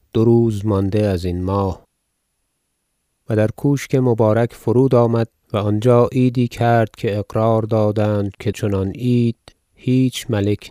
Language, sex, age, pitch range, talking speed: Persian, male, 30-49, 105-120 Hz, 135 wpm